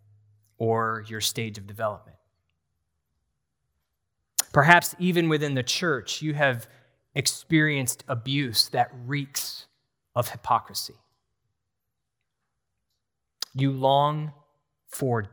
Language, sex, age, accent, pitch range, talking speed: English, male, 20-39, American, 115-140 Hz, 80 wpm